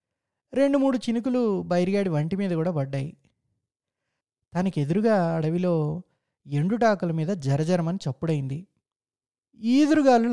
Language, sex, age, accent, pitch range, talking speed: Telugu, male, 20-39, native, 155-215 Hz, 95 wpm